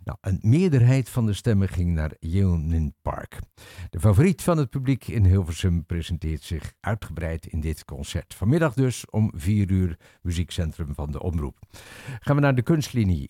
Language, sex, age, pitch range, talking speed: Dutch, male, 60-79, 85-115 Hz, 165 wpm